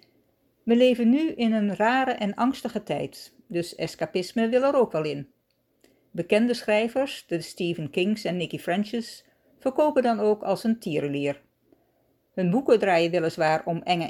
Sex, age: female, 60-79